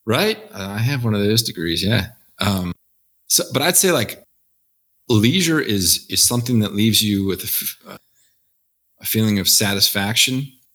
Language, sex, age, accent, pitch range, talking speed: English, male, 30-49, American, 90-115 Hz, 160 wpm